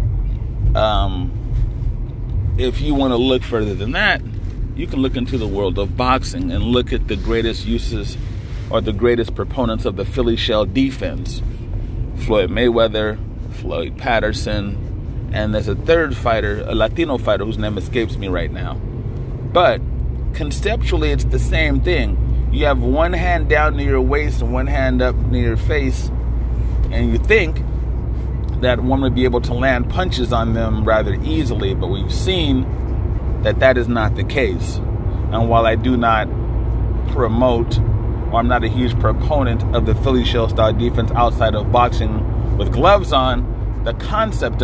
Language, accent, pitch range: English, American, 105-120 Hz